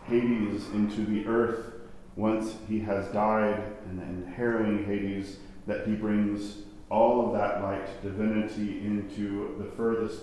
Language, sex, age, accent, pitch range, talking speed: English, male, 40-59, American, 100-110 Hz, 135 wpm